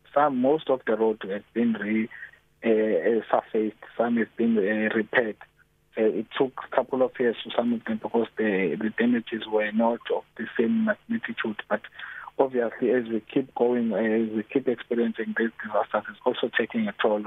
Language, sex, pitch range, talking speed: English, male, 110-125 Hz, 185 wpm